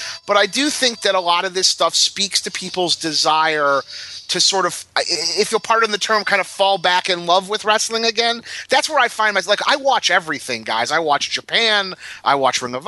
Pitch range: 155-210 Hz